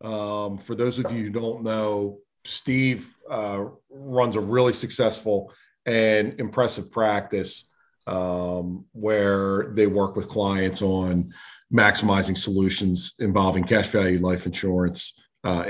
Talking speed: 120 wpm